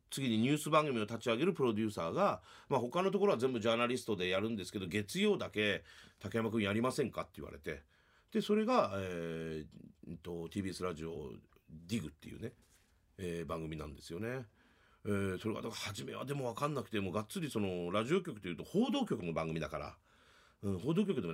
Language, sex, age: Japanese, male, 40-59